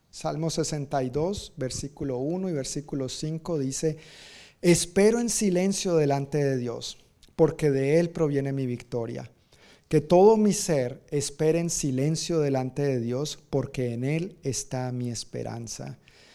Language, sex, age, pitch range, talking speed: Spanish, male, 40-59, 130-165 Hz, 130 wpm